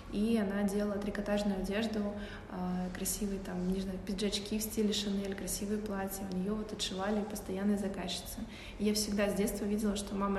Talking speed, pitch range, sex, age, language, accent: 170 wpm, 195-215 Hz, female, 20-39, Russian, native